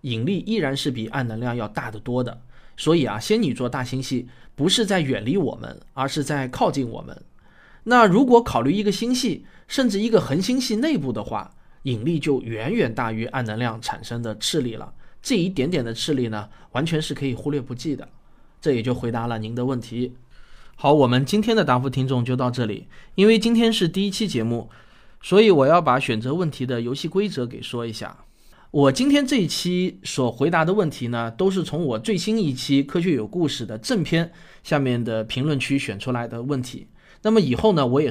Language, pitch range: Chinese, 120-170 Hz